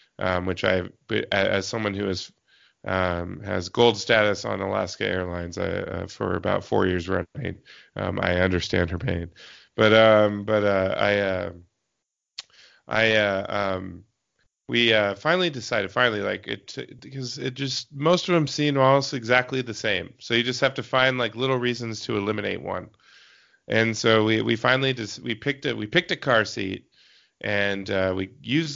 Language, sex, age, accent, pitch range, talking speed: English, male, 30-49, American, 100-125 Hz, 175 wpm